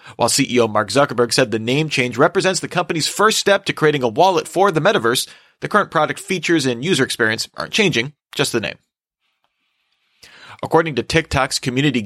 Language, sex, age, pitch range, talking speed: English, male, 30-49, 115-150 Hz, 180 wpm